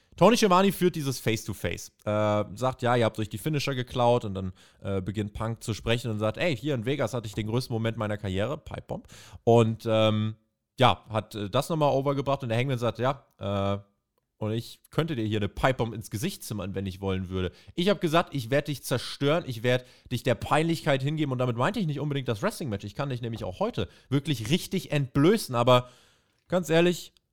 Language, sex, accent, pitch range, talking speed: German, male, German, 105-150 Hz, 210 wpm